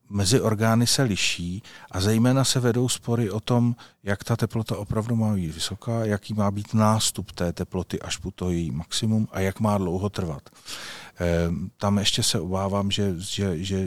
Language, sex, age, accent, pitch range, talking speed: Czech, male, 40-59, native, 90-110 Hz, 170 wpm